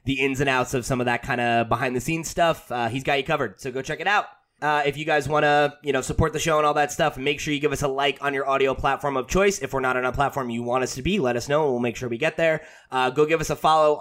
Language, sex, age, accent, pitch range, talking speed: English, male, 20-39, American, 130-155 Hz, 330 wpm